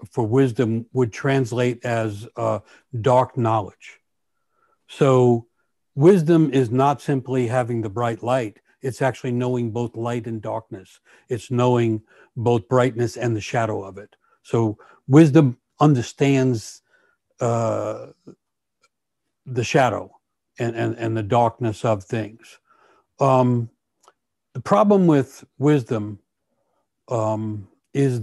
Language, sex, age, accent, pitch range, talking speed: English, male, 60-79, American, 115-135 Hz, 115 wpm